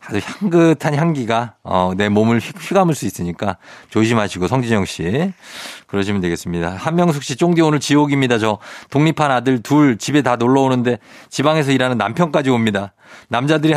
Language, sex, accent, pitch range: Korean, male, native, 105-155 Hz